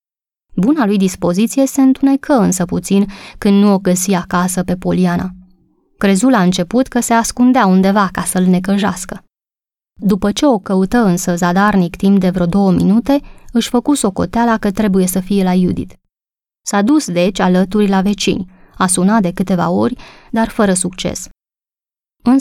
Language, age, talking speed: Romanian, 20-39, 160 wpm